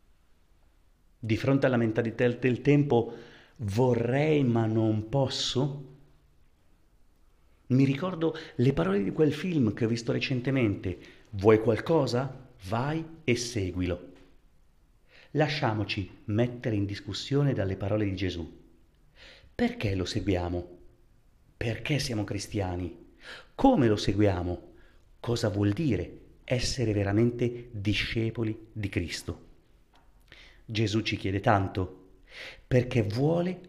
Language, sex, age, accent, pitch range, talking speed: Italian, male, 40-59, native, 100-130 Hz, 100 wpm